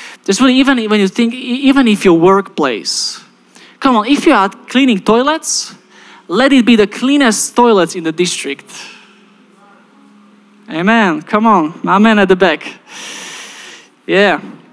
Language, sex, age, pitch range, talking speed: English, male, 20-39, 170-235 Hz, 140 wpm